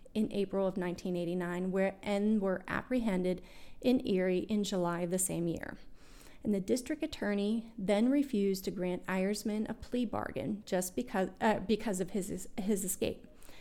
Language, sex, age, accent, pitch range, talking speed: English, female, 30-49, American, 200-265 Hz, 160 wpm